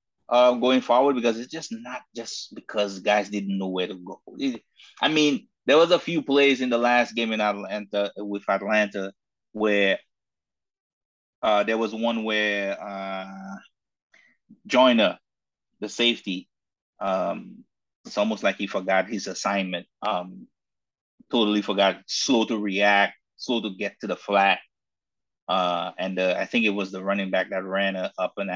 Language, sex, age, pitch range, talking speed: English, male, 30-49, 95-115 Hz, 160 wpm